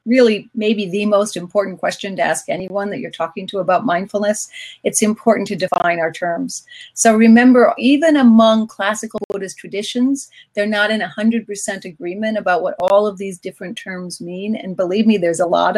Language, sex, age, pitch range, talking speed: English, female, 40-59, 180-220 Hz, 185 wpm